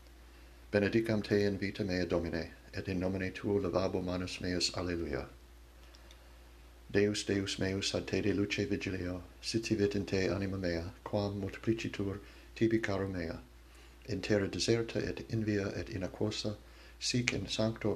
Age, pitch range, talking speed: 60-79, 90-105 Hz, 145 wpm